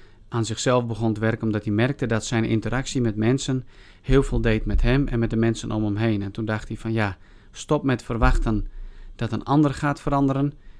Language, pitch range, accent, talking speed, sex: Dutch, 110-150 Hz, Dutch, 215 wpm, male